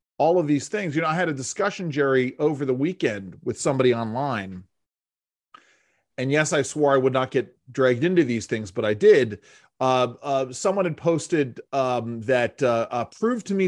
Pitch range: 125-170 Hz